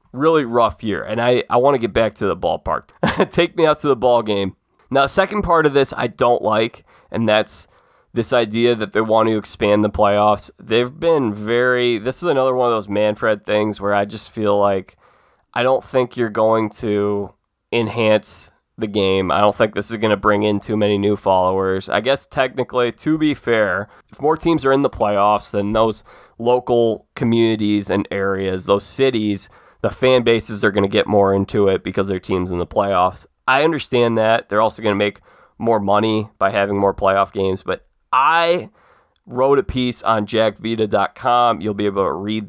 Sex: male